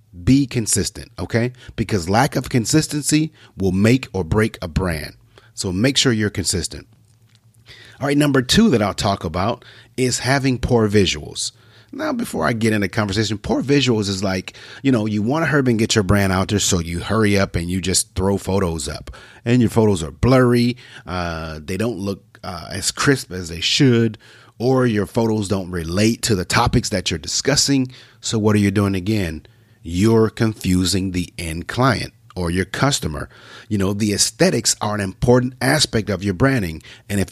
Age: 30-49